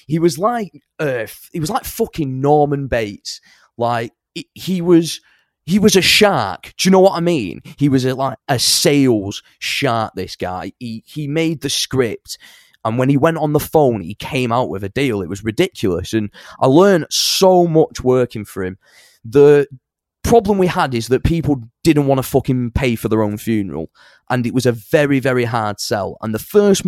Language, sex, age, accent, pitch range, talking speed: English, male, 20-39, British, 105-145 Hz, 195 wpm